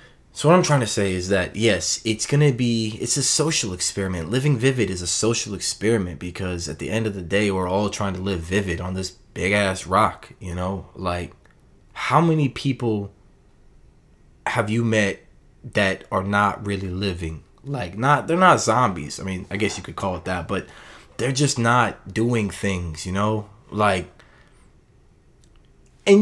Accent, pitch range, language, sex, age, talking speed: American, 95-120 Hz, English, male, 20-39, 180 wpm